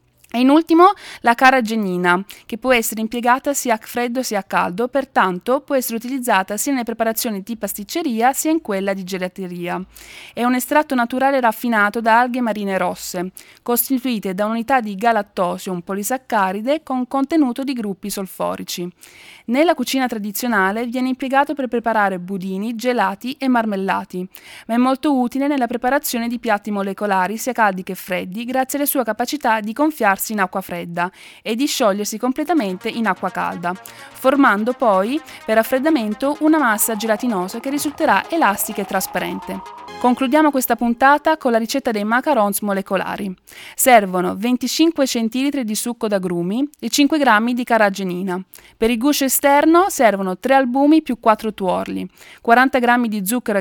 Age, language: 20-39, Italian